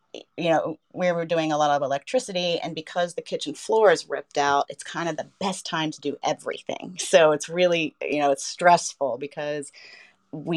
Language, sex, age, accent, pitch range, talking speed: English, female, 30-49, American, 145-170 Hz, 200 wpm